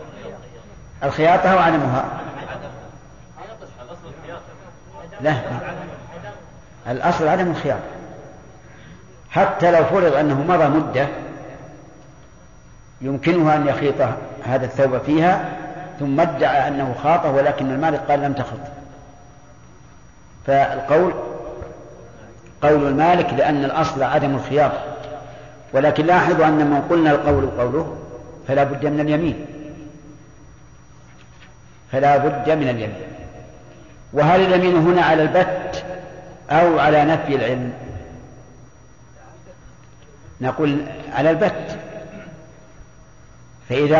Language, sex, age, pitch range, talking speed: Arabic, male, 50-69, 130-160 Hz, 85 wpm